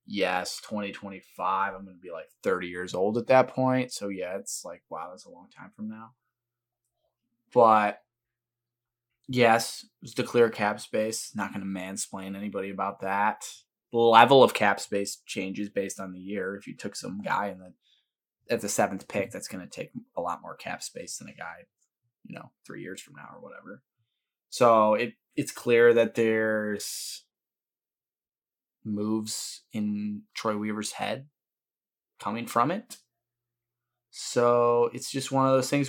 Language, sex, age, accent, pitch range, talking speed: English, male, 20-39, American, 100-120 Hz, 165 wpm